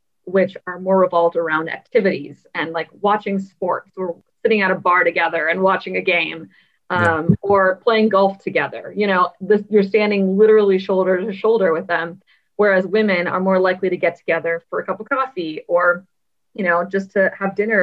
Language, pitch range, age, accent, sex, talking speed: English, 175-210 Hz, 20-39, American, female, 185 wpm